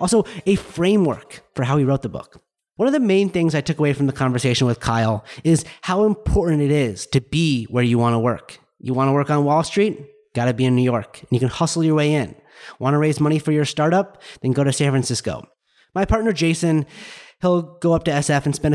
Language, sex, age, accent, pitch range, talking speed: English, male, 30-49, American, 130-165 Hz, 245 wpm